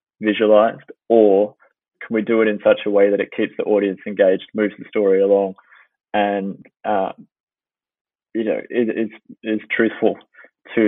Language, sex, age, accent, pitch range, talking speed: English, male, 20-39, Australian, 105-115 Hz, 155 wpm